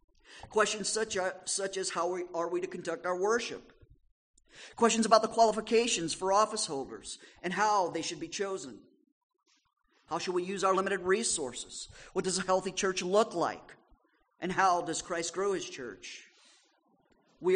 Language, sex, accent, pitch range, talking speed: English, male, American, 155-200 Hz, 155 wpm